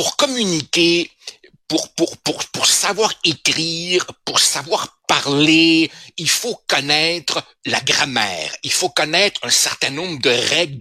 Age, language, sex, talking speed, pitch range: 60-79, French, male, 135 wpm, 135-180 Hz